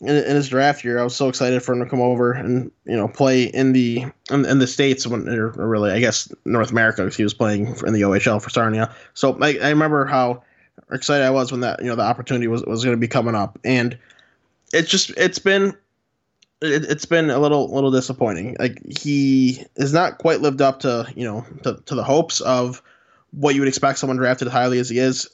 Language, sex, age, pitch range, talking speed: English, male, 20-39, 120-145 Hz, 230 wpm